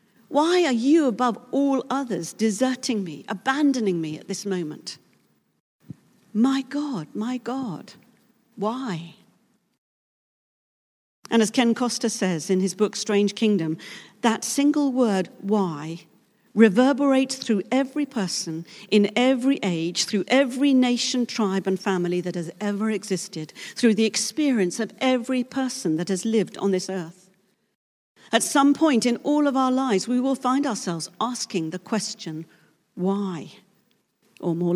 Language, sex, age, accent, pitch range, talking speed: English, female, 50-69, British, 185-250 Hz, 135 wpm